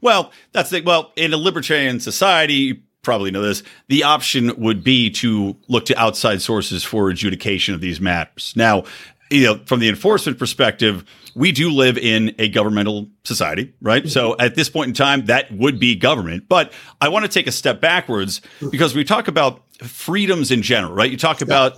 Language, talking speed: English, 195 wpm